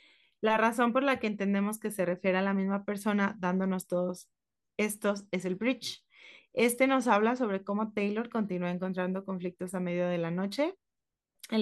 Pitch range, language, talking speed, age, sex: 180-220 Hz, Spanish, 175 wpm, 30-49, female